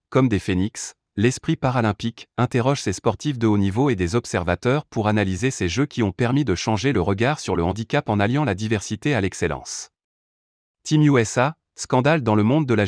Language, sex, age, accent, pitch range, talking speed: French, male, 30-49, French, 100-130 Hz, 195 wpm